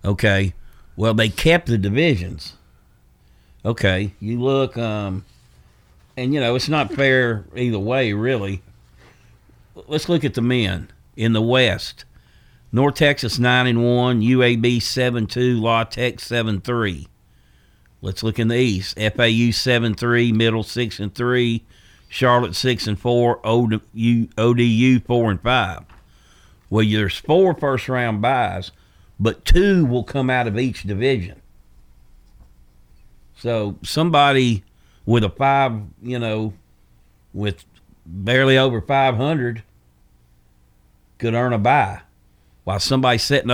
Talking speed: 130 wpm